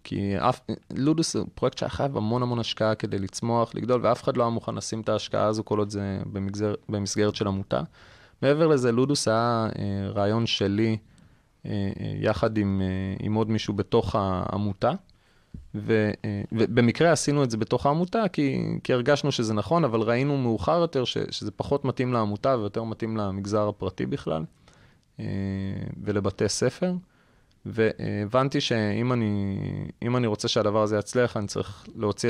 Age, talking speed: 20-39, 150 wpm